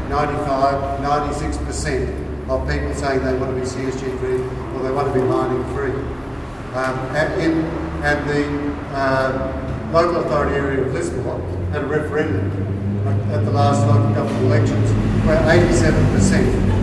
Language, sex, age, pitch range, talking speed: English, male, 50-69, 130-150 Hz, 160 wpm